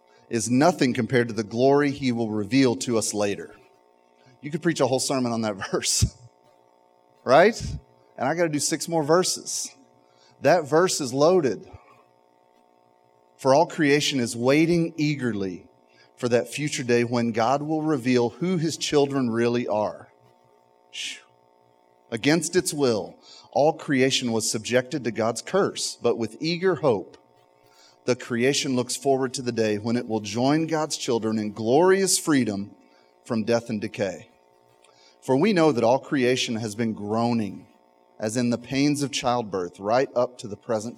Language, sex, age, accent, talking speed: English, male, 30-49, American, 155 wpm